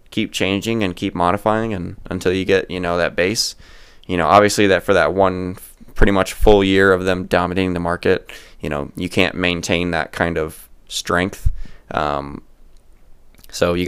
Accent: American